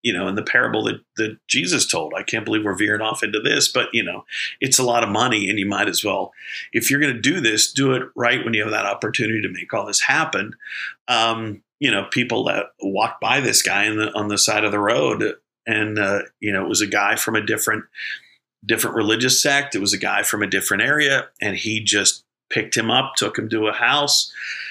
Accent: American